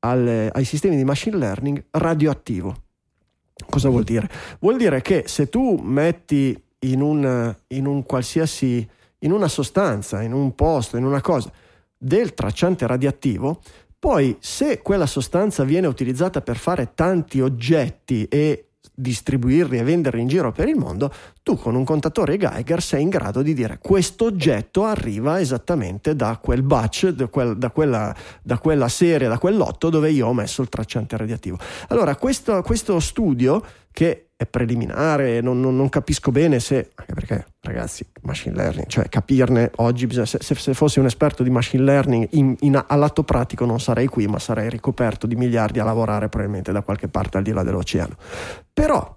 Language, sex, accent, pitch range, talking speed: Italian, male, native, 115-155 Hz, 165 wpm